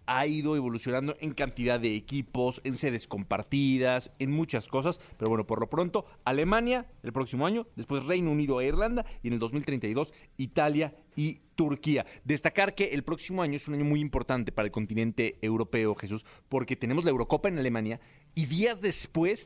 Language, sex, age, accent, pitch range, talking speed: Spanish, male, 40-59, Mexican, 120-155 Hz, 180 wpm